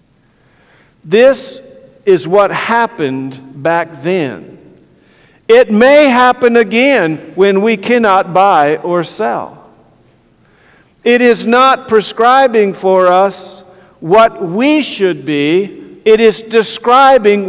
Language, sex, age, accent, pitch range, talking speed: English, male, 50-69, American, 155-220 Hz, 100 wpm